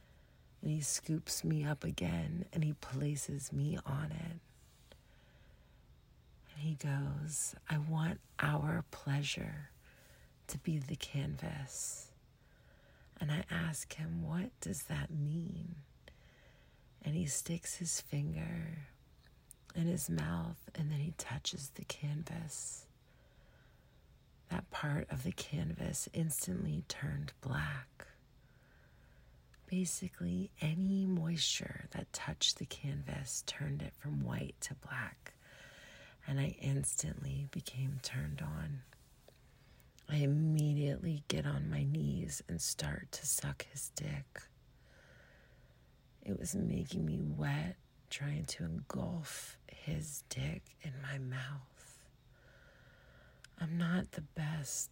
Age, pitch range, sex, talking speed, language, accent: 40-59, 135-165 Hz, female, 110 wpm, English, American